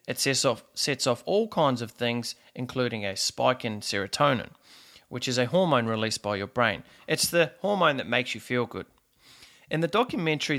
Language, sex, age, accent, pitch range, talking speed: English, male, 30-49, Australian, 115-145 Hz, 180 wpm